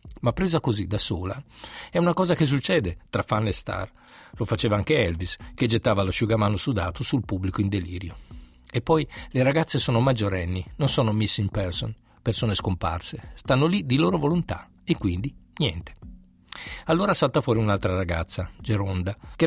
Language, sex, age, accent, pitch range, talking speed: Italian, male, 50-69, native, 95-135 Hz, 165 wpm